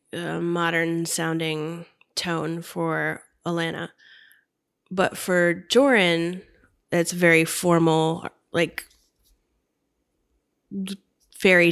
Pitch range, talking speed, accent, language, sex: 170-210 Hz, 70 wpm, American, English, female